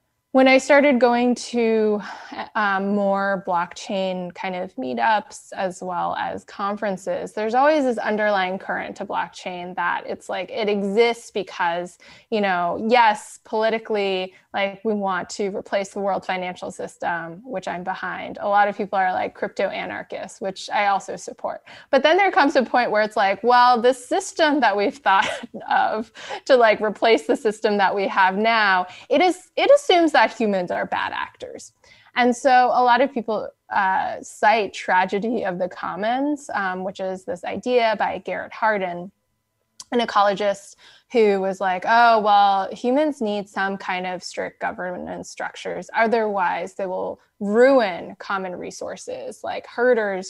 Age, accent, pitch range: 20-39, American, 190-245 Hz